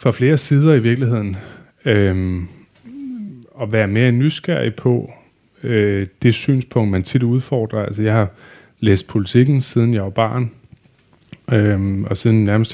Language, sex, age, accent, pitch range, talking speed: Danish, male, 30-49, native, 105-120 Hz, 140 wpm